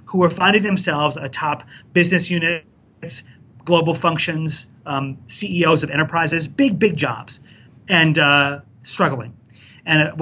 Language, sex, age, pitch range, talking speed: English, male, 30-49, 130-180 Hz, 125 wpm